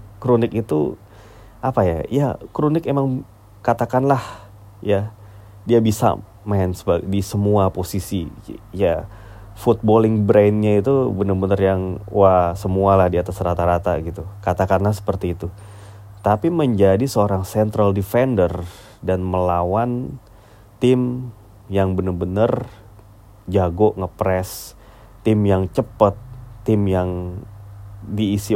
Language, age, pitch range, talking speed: Indonesian, 30-49, 95-110 Hz, 105 wpm